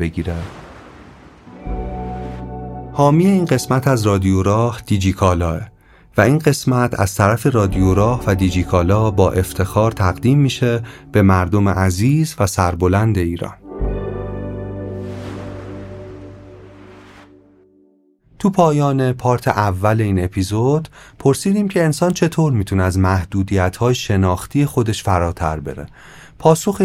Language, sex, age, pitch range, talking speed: Persian, male, 30-49, 95-130 Hz, 95 wpm